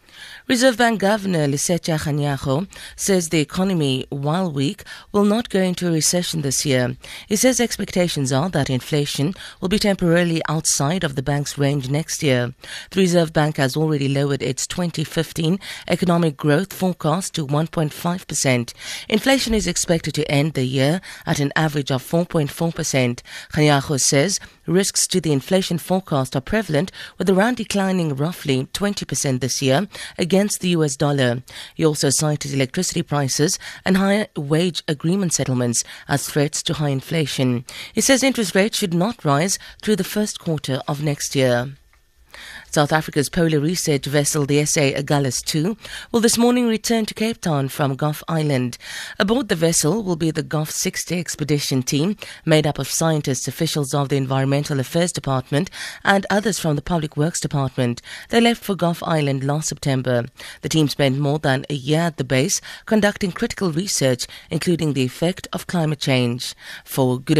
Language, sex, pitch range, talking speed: English, female, 140-185 Hz, 165 wpm